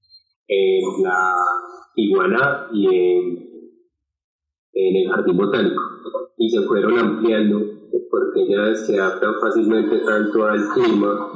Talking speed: 110 wpm